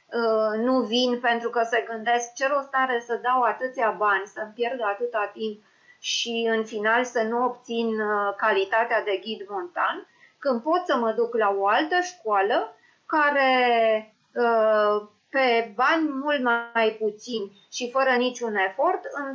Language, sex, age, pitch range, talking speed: Romanian, female, 30-49, 210-255 Hz, 145 wpm